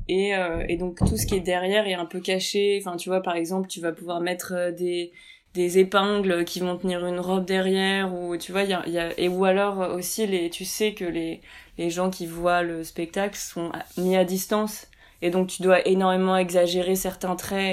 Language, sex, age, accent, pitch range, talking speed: French, female, 20-39, French, 170-190 Hz, 225 wpm